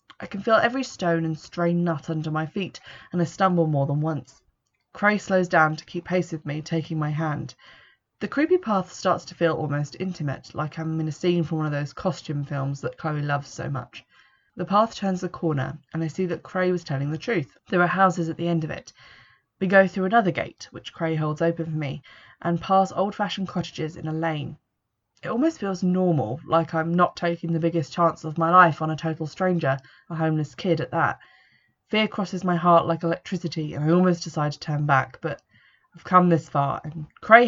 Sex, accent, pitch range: female, British, 155-180 Hz